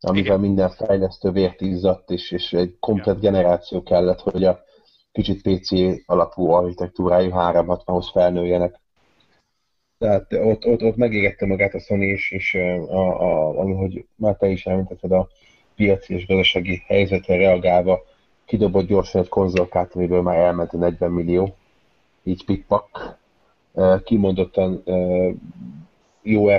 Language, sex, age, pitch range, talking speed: Hungarian, male, 30-49, 90-100 Hz, 125 wpm